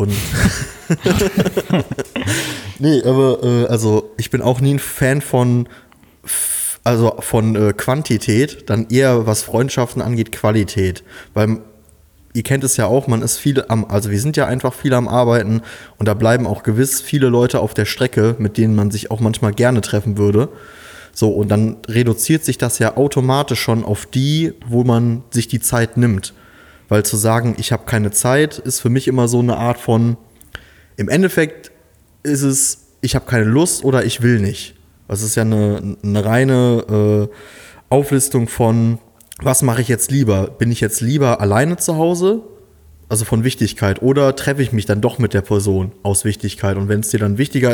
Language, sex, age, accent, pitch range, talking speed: German, male, 20-39, German, 105-130 Hz, 175 wpm